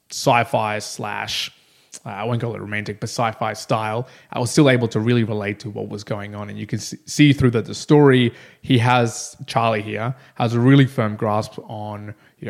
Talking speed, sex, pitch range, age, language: 200 wpm, male, 110-135 Hz, 20-39, English